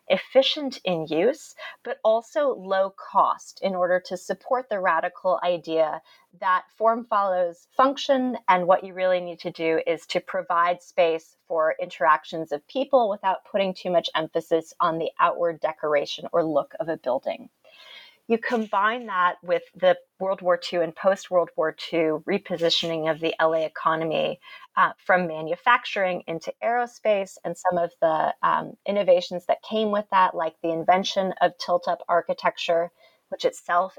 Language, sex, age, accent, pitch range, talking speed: English, female, 30-49, American, 170-215 Hz, 155 wpm